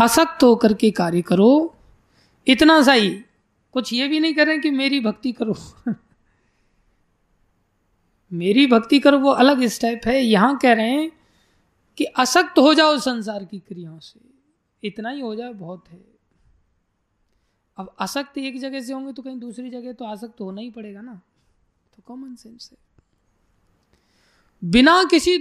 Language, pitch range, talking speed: Hindi, 210-275 Hz, 150 wpm